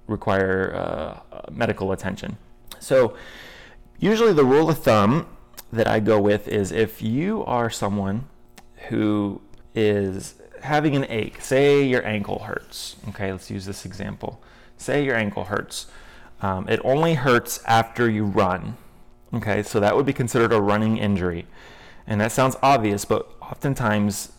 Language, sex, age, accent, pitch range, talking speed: English, male, 30-49, American, 95-115 Hz, 145 wpm